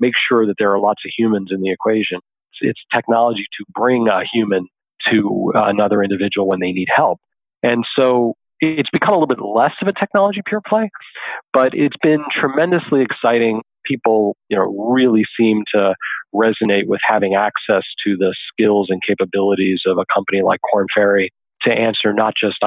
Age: 40-59